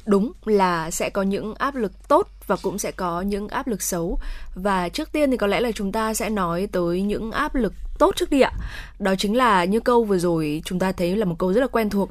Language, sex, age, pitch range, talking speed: Vietnamese, female, 20-39, 185-240 Hz, 260 wpm